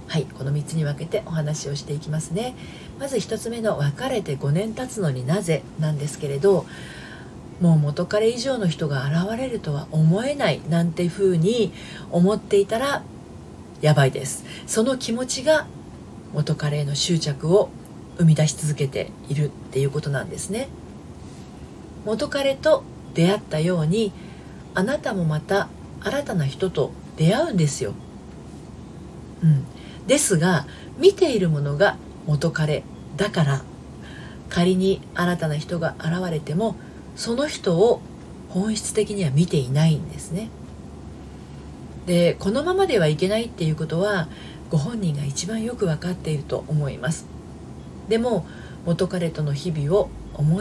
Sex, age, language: female, 40-59, Japanese